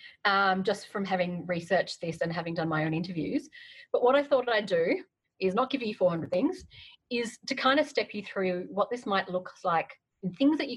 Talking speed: 225 wpm